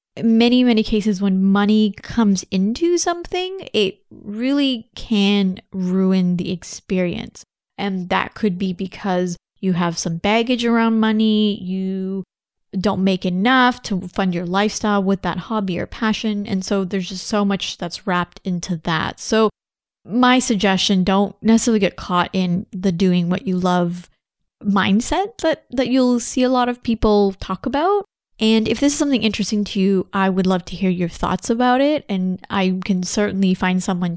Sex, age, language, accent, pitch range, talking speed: female, 20-39, English, American, 185-230 Hz, 165 wpm